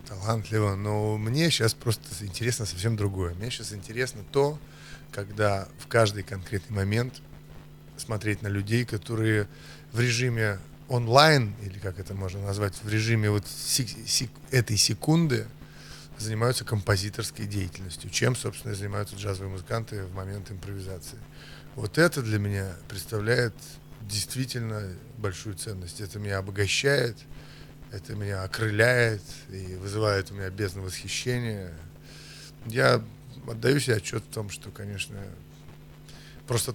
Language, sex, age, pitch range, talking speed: Russian, male, 30-49, 100-115 Hz, 120 wpm